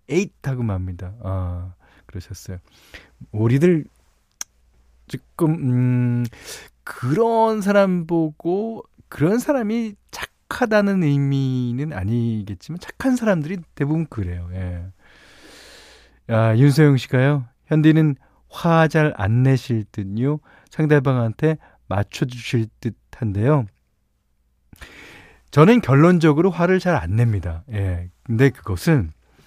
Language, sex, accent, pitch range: Korean, male, native, 105-175 Hz